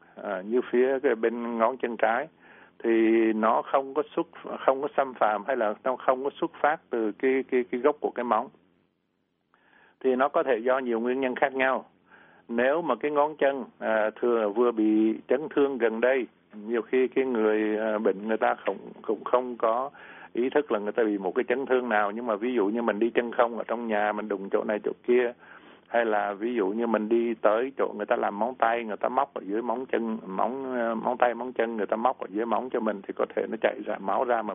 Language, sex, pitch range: Vietnamese, male, 110-130 Hz